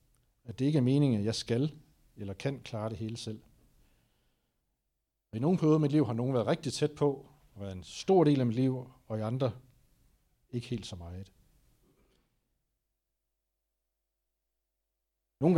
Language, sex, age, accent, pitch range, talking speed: Danish, male, 60-79, native, 105-130 Hz, 160 wpm